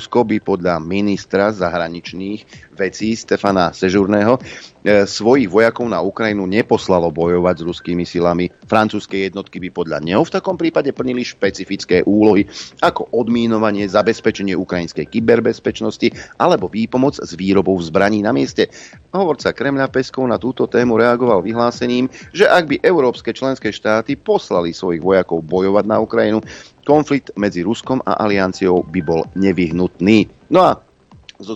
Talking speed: 135 wpm